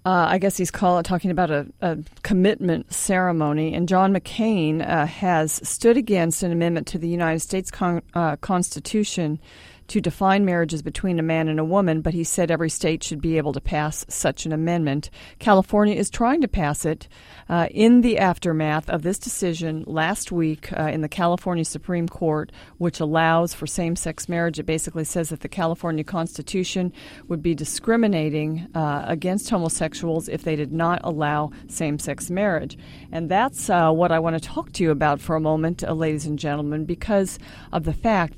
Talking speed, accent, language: 180 wpm, American, English